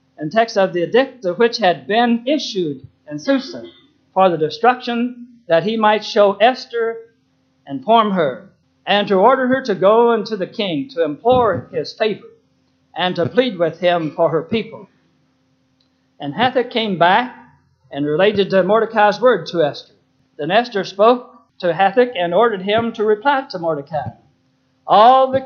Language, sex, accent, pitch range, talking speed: English, male, American, 175-235 Hz, 165 wpm